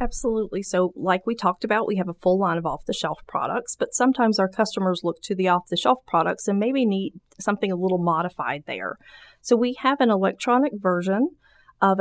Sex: female